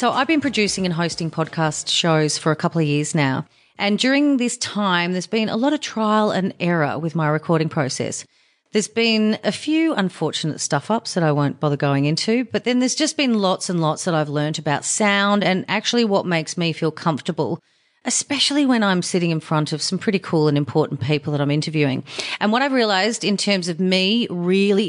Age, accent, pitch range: 30-49, Australian, 155-205 Hz